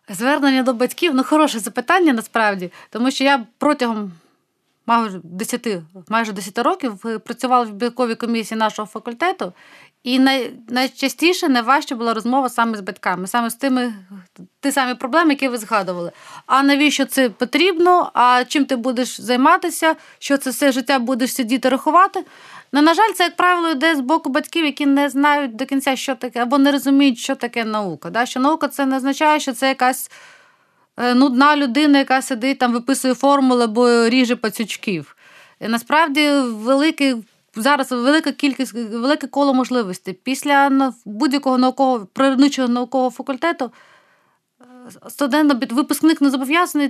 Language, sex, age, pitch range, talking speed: Ukrainian, female, 30-49, 235-285 Hz, 155 wpm